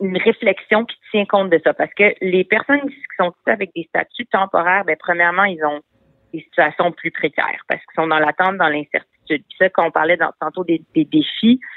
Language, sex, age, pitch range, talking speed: French, female, 40-59, 170-225 Hz, 220 wpm